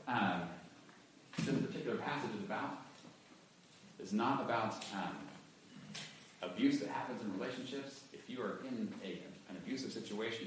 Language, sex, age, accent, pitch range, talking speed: English, male, 40-59, American, 100-145 Hz, 125 wpm